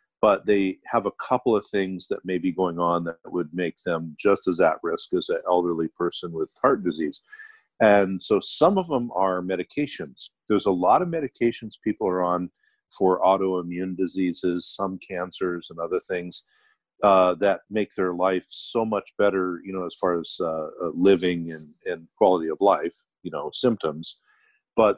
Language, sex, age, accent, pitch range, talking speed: English, male, 50-69, American, 85-105 Hz, 180 wpm